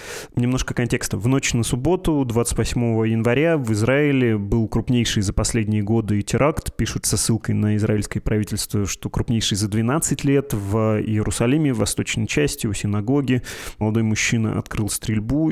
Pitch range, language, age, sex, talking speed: 110-125 Hz, Russian, 20-39, male, 150 wpm